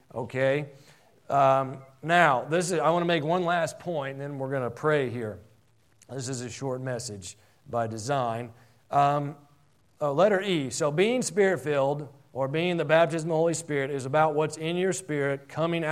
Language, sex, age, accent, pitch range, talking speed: English, male, 40-59, American, 135-165 Hz, 180 wpm